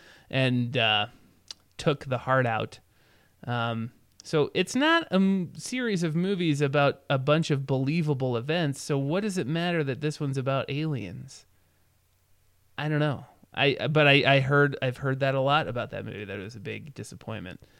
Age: 30-49